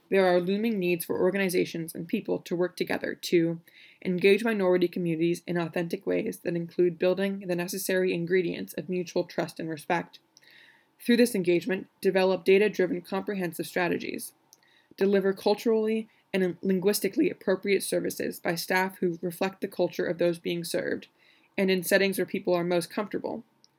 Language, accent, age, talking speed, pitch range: English, American, 20-39, 150 wpm, 175-200 Hz